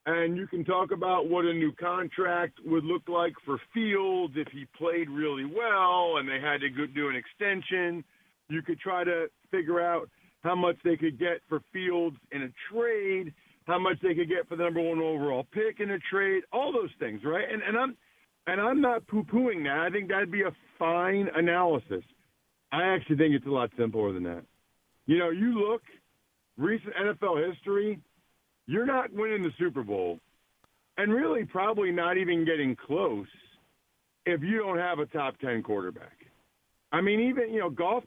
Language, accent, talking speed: English, American, 185 wpm